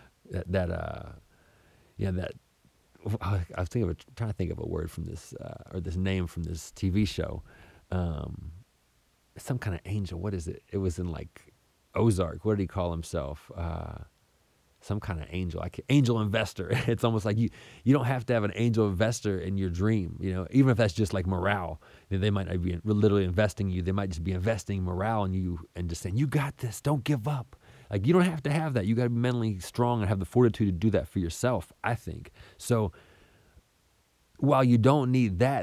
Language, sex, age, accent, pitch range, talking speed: English, male, 30-49, American, 90-120 Hz, 215 wpm